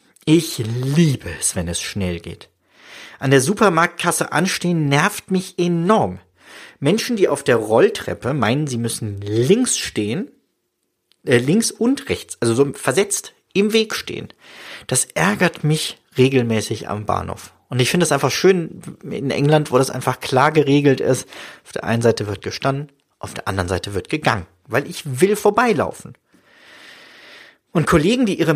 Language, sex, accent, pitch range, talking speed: German, male, German, 115-175 Hz, 155 wpm